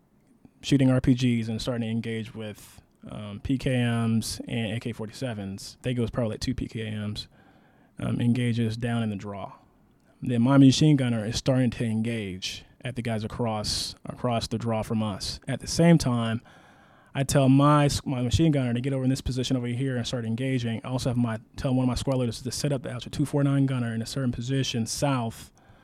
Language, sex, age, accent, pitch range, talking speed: English, male, 20-39, American, 115-135 Hz, 195 wpm